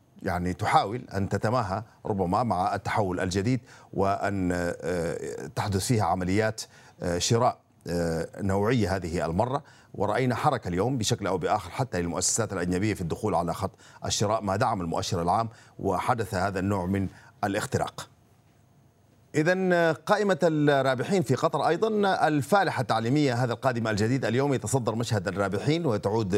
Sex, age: male, 50-69